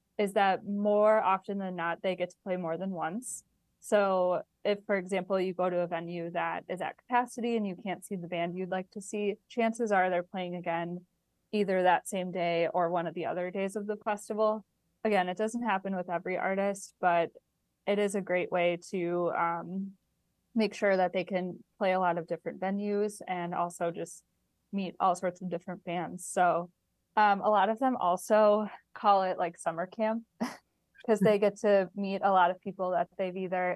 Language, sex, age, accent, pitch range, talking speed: English, female, 20-39, American, 175-205 Hz, 200 wpm